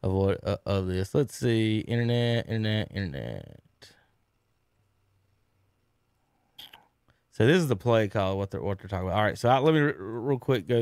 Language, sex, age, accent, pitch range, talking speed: English, male, 20-39, American, 105-140 Hz, 185 wpm